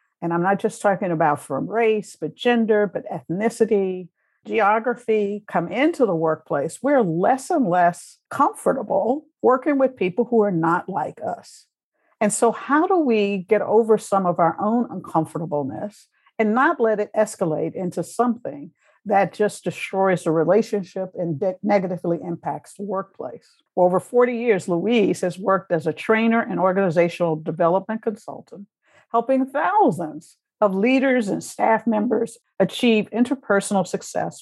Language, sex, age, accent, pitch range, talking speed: English, female, 60-79, American, 175-225 Hz, 145 wpm